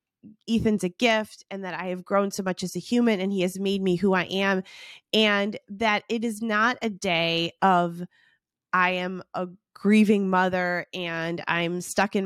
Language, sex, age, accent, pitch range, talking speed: English, female, 20-39, American, 180-225 Hz, 185 wpm